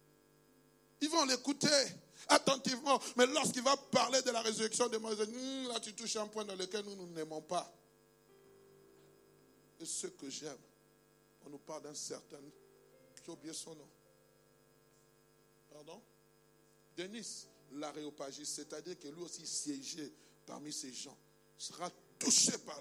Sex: male